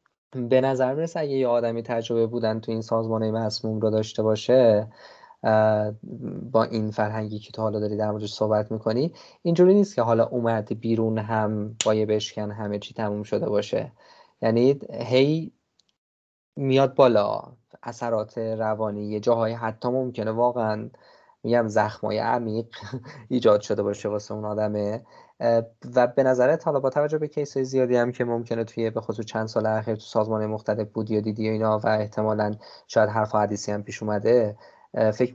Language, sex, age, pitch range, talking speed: Persian, male, 20-39, 105-125 Hz, 160 wpm